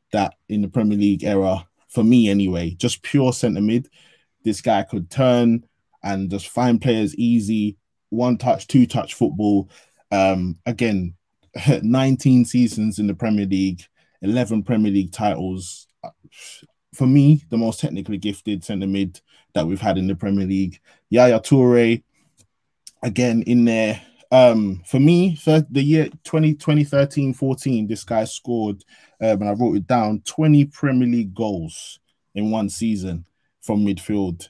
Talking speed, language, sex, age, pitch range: 140 wpm, English, male, 20-39, 100-125 Hz